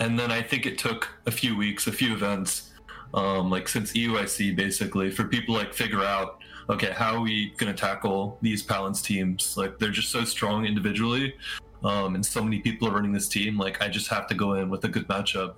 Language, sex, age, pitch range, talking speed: English, male, 20-39, 100-120 Hz, 225 wpm